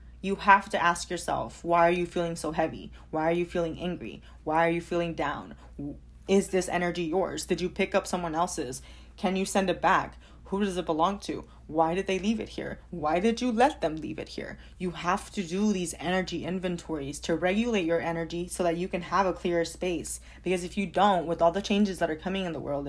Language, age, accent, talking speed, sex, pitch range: English, 20-39, American, 230 wpm, female, 155-190 Hz